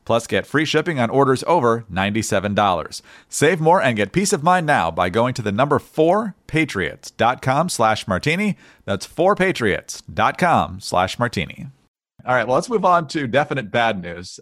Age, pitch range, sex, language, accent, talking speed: 40-59, 105-140 Hz, male, English, American, 160 wpm